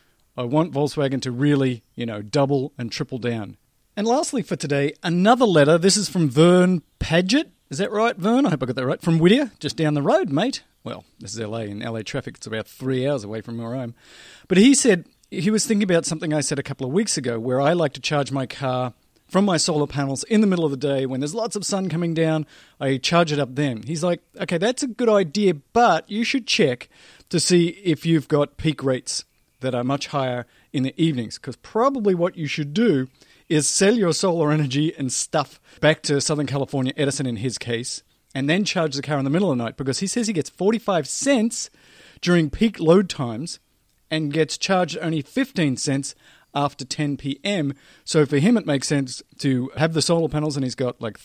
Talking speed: 220 wpm